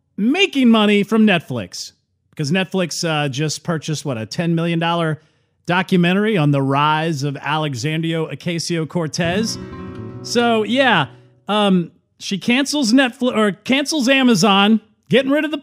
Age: 40-59